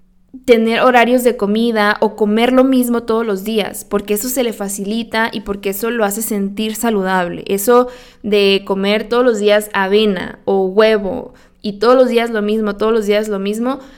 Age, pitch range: 20-39, 205-250 Hz